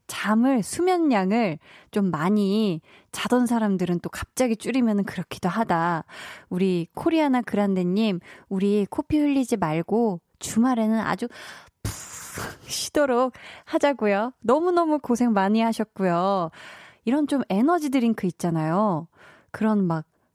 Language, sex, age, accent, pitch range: Korean, female, 20-39, native, 185-250 Hz